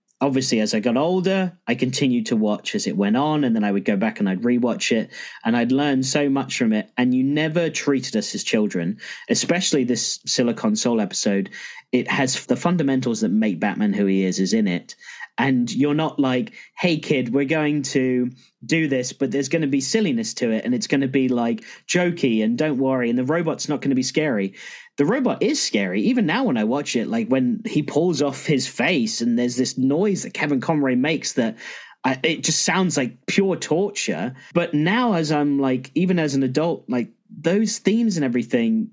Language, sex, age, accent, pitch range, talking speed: English, male, 30-49, British, 130-200 Hz, 215 wpm